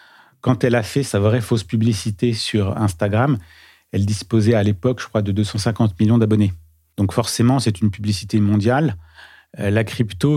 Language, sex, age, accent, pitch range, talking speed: French, male, 40-59, French, 105-120 Hz, 160 wpm